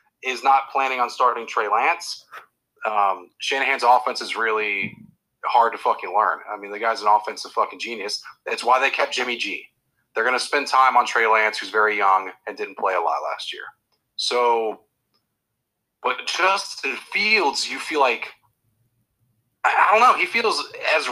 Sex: male